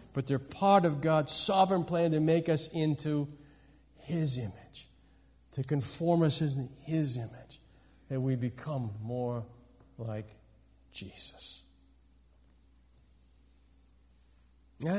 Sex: male